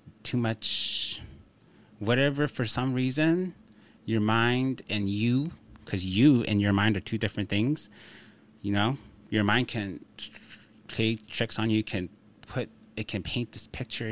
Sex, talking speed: male, 150 wpm